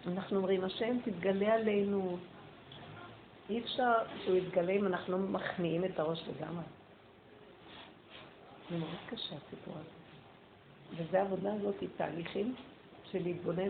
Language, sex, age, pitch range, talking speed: Hebrew, female, 50-69, 175-220 Hz, 115 wpm